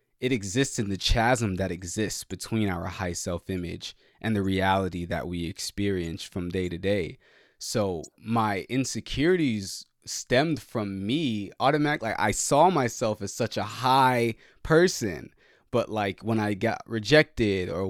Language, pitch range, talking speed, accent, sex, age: English, 95-125 Hz, 145 wpm, American, male, 20-39